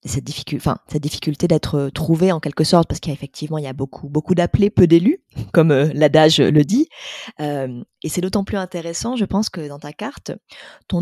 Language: French